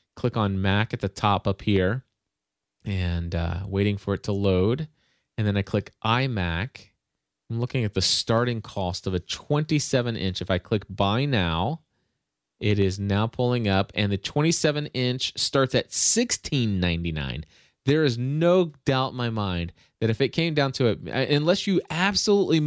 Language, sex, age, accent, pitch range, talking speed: English, male, 30-49, American, 100-130 Hz, 165 wpm